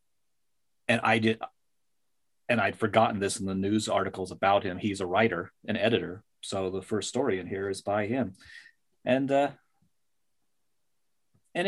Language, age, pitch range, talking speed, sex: English, 30-49, 95-110 Hz, 155 wpm, male